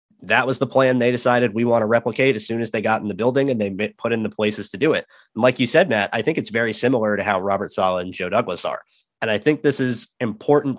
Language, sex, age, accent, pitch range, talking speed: English, male, 30-49, American, 100-120 Hz, 285 wpm